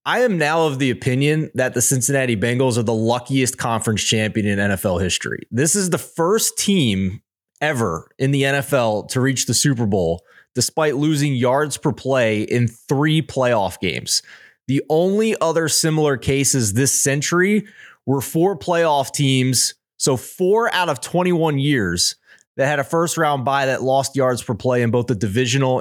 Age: 20-39